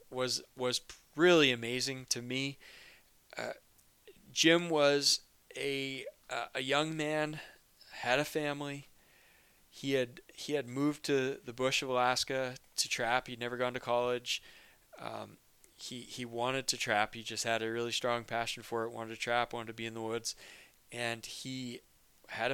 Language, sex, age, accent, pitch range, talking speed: English, male, 20-39, American, 120-140 Hz, 160 wpm